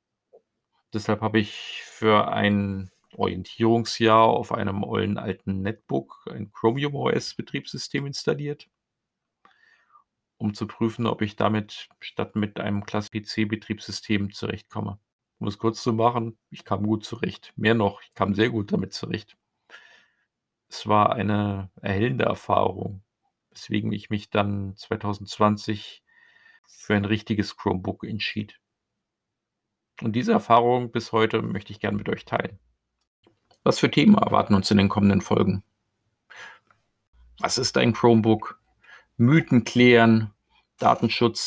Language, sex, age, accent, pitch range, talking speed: German, male, 50-69, German, 105-115 Hz, 125 wpm